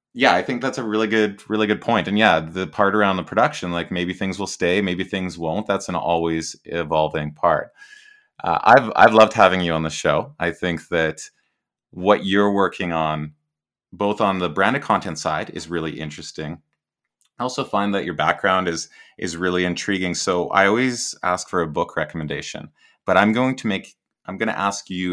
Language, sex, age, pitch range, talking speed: English, male, 30-49, 85-105 Hz, 195 wpm